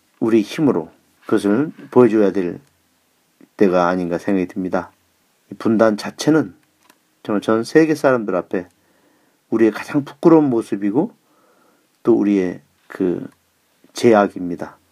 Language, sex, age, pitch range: Korean, male, 40-59, 95-135 Hz